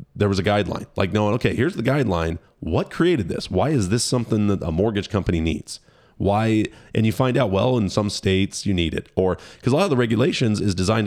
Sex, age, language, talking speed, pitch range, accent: male, 30-49, English, 235 wpm, 90-110 Hz, American